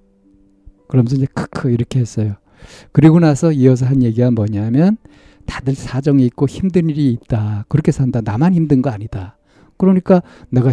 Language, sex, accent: Korean, male, native